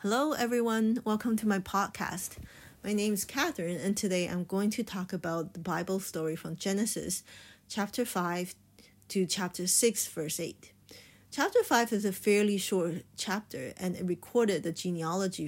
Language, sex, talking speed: English, female, 160 wpm